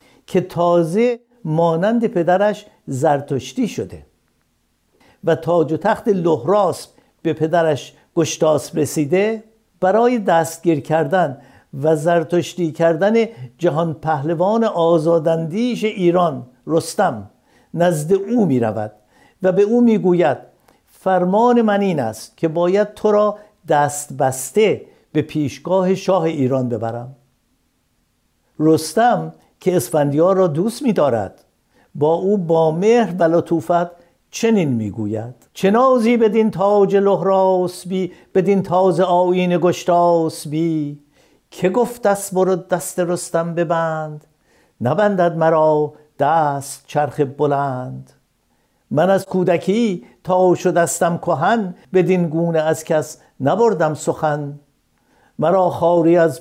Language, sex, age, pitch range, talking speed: Persian, male, 60-79, 155-190 Hz, 110 wpm